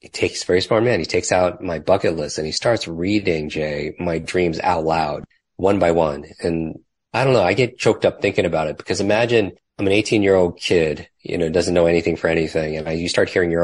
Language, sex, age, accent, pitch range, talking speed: English, male, 30-49, American, 80-85 Hz, 240 wpm